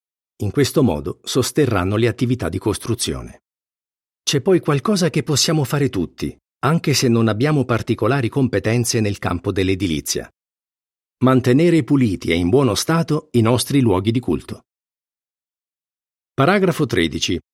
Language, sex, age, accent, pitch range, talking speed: Italian, male, 50-69, native, 110-145 Hz, 125 wpm